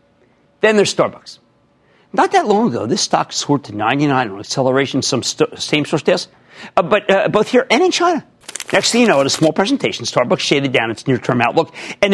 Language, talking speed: English, 210 wpm